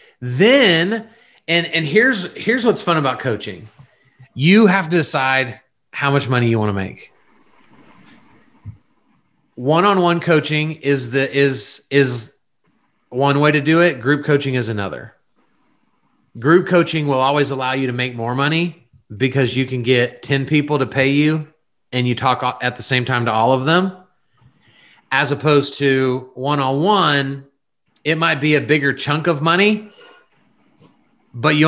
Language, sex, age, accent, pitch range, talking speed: English, male, 30-49, American, 125-155 Hz, 150 wpm